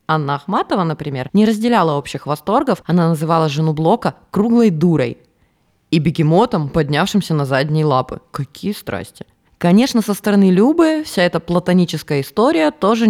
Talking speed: 135 wpm